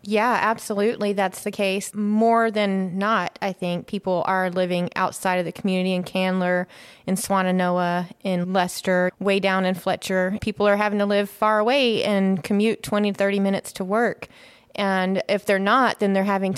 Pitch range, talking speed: 190-225 Hz, 175 wpm